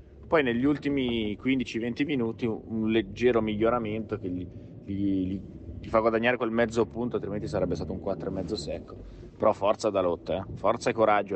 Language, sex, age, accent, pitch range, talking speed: Italian, male, 20-39, native, 100-125 Hz, 175 wpm